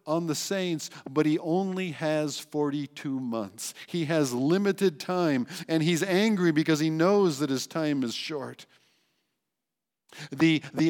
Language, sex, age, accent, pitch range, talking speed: English, male, 50-69, American, 135-190 Hz, 145 wpm